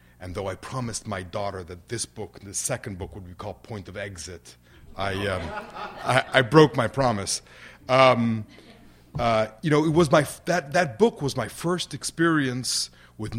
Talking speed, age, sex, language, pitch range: 185 wpm, 30-49, male, English, 105-140 Hz